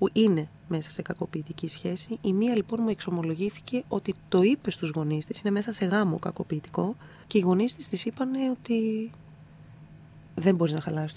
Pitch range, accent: 155-210 Hz, native